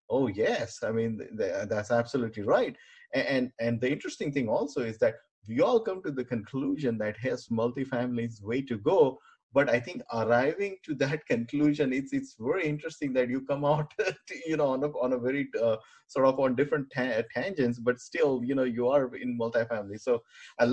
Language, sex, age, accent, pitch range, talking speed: English, male, 20-39, Indian, 110-145 Hz, 205 wpm